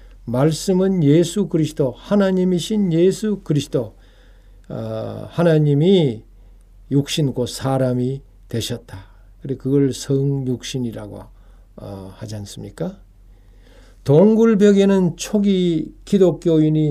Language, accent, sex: Korean, native, male